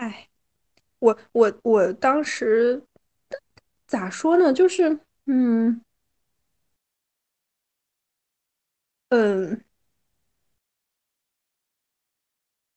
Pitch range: 205-265 Hz